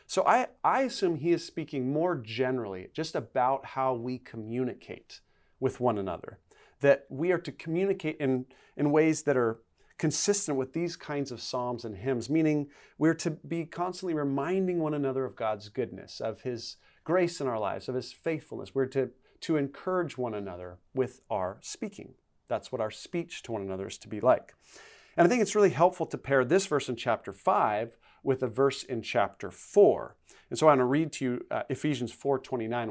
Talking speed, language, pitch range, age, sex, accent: 195 wpm, English, 125-165 Hz, 40-59, male, American